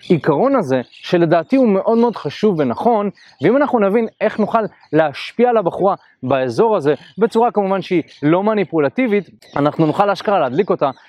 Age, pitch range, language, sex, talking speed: 20-39, 155-220 Hz, Hebrew, male, 150 wpm